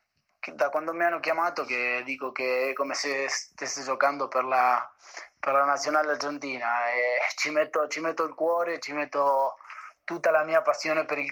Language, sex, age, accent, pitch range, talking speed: Italian, male, 20-39, Argentinian, 135-155 Hz, 180 wpm